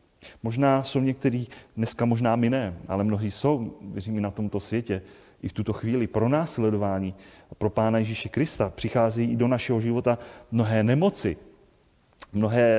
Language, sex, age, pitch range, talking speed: Czech, male, 30-49, 115-150 Hz, 145 wpm